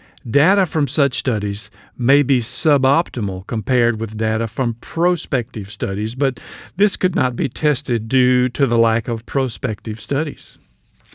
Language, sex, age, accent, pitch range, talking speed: English, male, 50-69, American, 115-145 Hz, 140 wpm